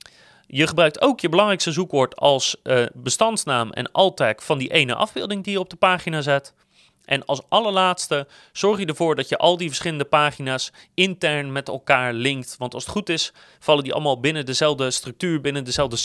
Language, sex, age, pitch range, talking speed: Dutch, male, 30-49, 135-185 Hz, 185 wpm